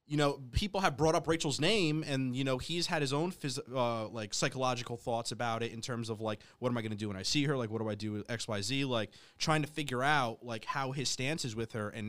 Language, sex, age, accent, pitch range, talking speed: English, male, 20-39, American, 115-145 Hz, 285 wpm